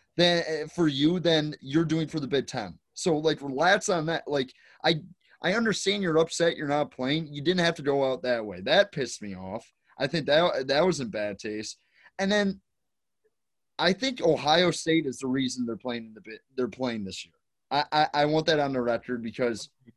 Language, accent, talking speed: English, American, 210 wpm